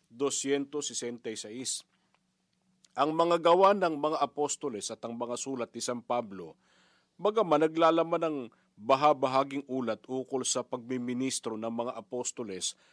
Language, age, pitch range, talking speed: Filipino, 50-69, 125-165 Hz, 110 wpm